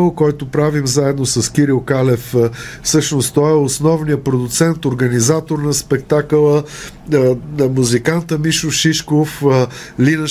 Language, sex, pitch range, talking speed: Bulgarian, male, 130-155 Hz, 110 wpm